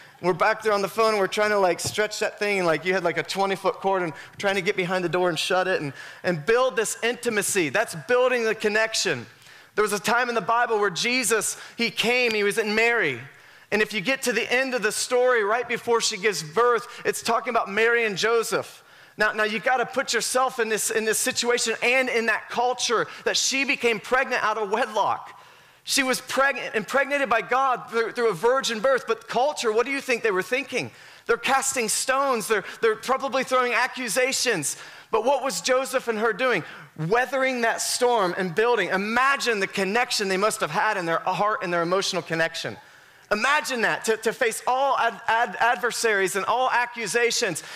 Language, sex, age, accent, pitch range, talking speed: English, male, 30-49, American, 205-250 Hz, 200 wpm